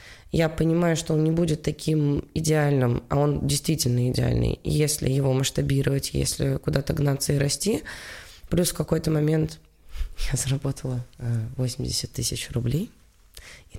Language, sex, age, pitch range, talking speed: Russian, female, 20-39, 125-165 Hz, 130 wpm